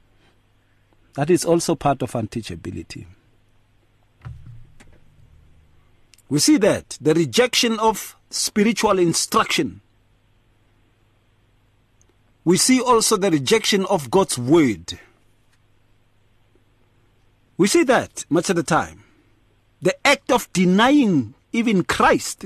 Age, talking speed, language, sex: 50-69, 95 wpm, English, male